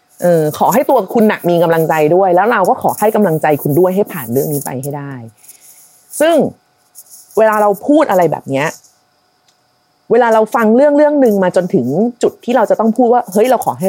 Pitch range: 145-215 Hz